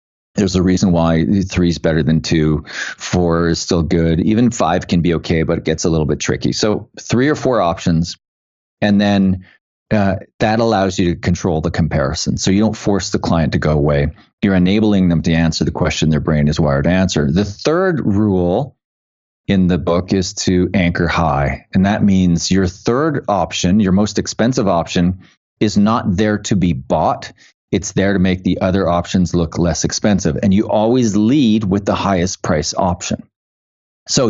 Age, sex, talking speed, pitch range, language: 30-49, male, 190 wpm, 85-105 Hz, English